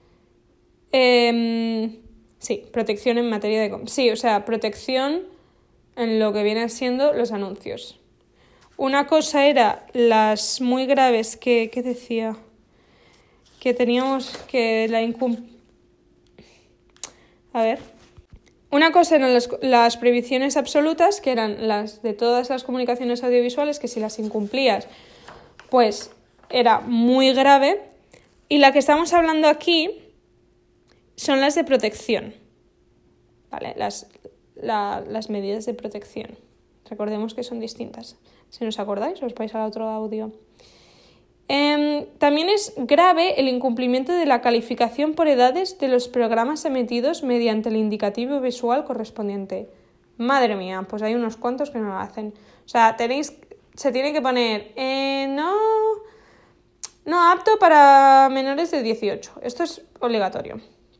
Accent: Spanish